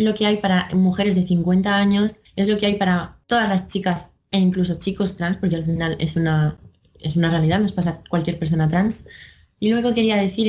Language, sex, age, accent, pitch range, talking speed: Spanish, female, 20-39, Spanish, 175-195 Hz, 230 wpm